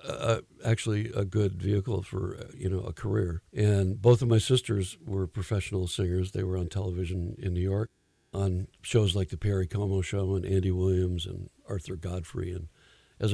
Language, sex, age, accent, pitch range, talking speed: English, male, 60-79, American, 95-110 Hz, 180 wpm